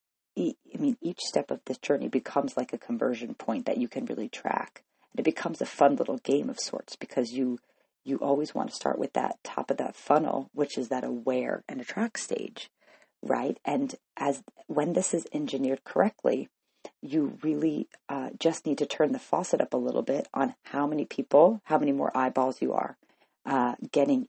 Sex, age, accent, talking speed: female, 40-59, American, 195 wpm